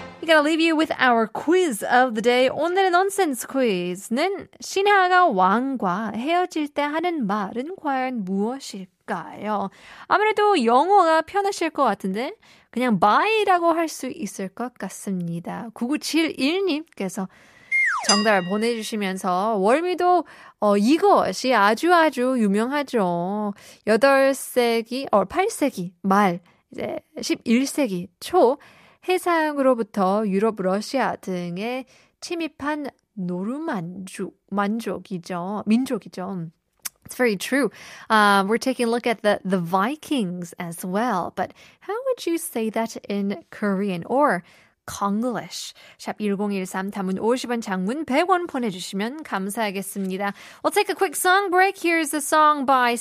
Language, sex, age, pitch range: Korean, female, 20-39, 200-310 Hz